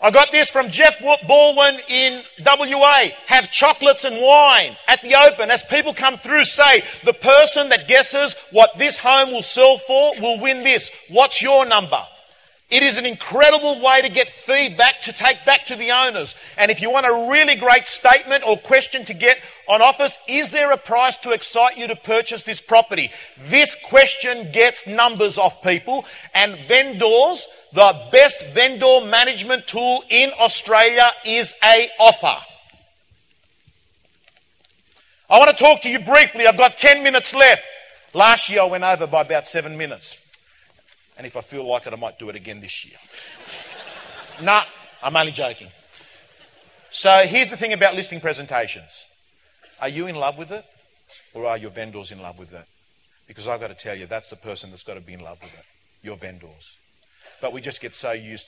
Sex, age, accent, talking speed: male, 40-59, Australian, 185 wpm